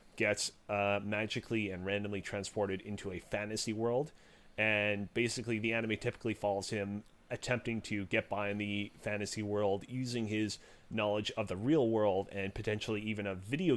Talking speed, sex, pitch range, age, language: 160 wpm, male, 100-115 Hz, 30-49, English